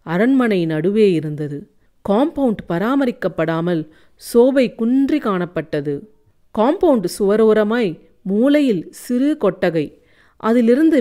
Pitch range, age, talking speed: 170-245 Hz, 40-59, 75 wpm